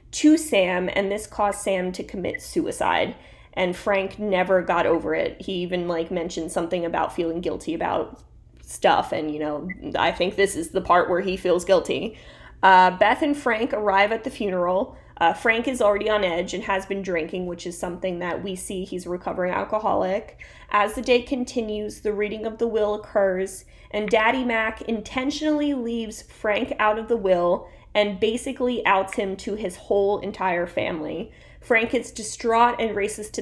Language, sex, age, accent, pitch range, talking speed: English, female, 20-39, American, 185-230 Hz, 180 wpm